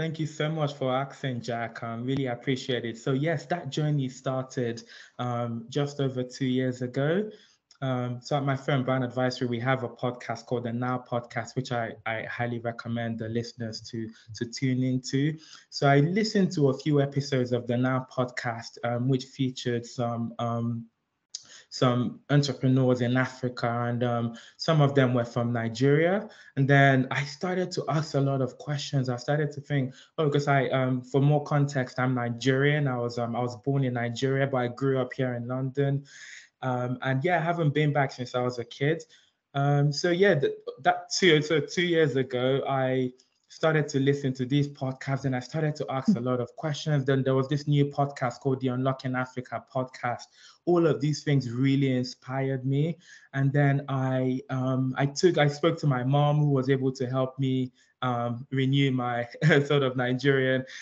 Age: 20-39